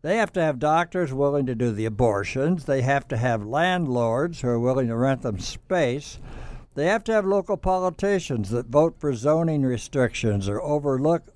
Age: 60-79